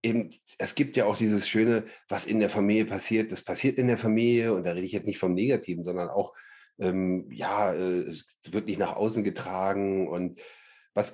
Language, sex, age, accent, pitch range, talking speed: German, male, 40-59, German, 95-110 Hz, 205 wpm